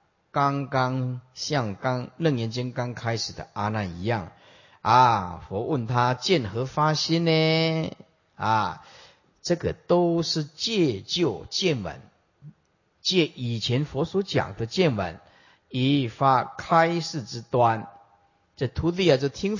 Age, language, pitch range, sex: 50-69, Chinese, 115-175 Hz, male